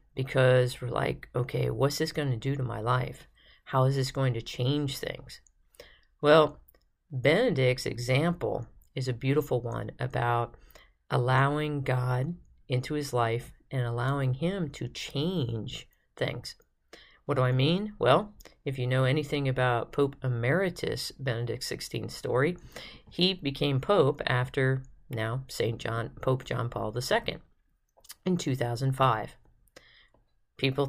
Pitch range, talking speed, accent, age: 125-145 Hz, 130 wpm, American, 40-59